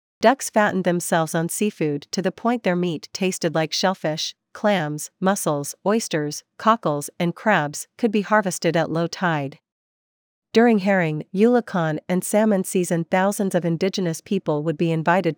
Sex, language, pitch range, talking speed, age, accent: female, English, 160-195 Hz, 150 wpm, 40-59, American